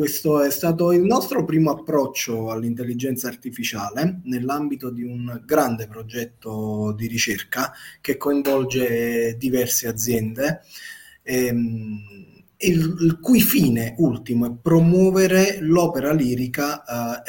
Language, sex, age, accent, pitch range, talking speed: Italian, male, 20-39, native, 120-165 Hz, 110 wpm